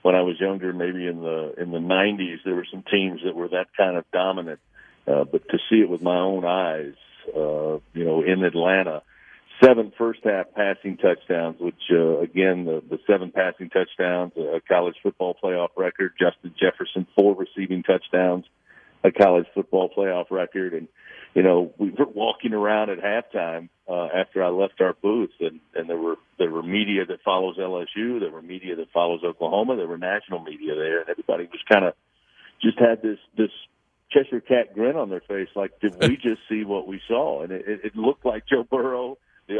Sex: male